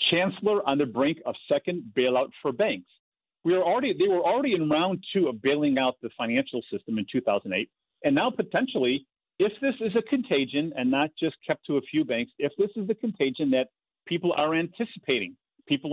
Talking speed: 195 wpm